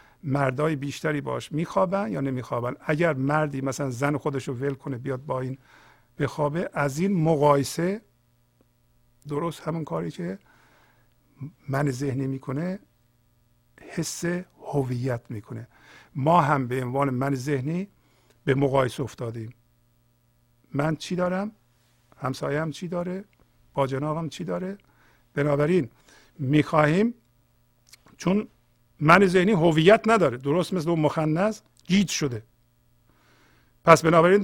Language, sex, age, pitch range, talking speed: Persian, male, 50-69, 130-180 Hz, 110 wpm